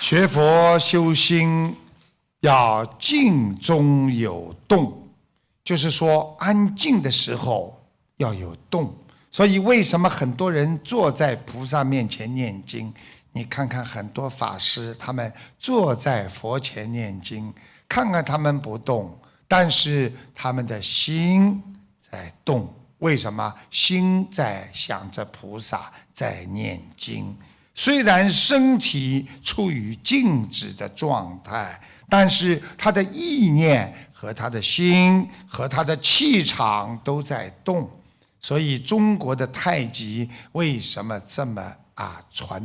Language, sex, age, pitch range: Chinese, male, 60-79, 115-170 Hz